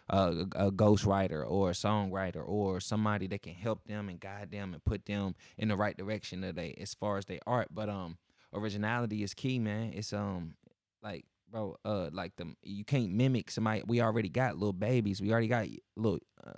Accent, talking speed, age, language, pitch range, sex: American, 205 wpm, 20-39, English, 100-120 Hz, male